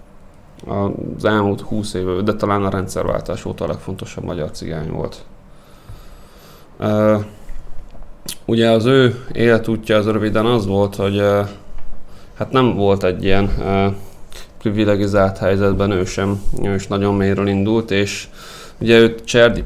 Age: 20-39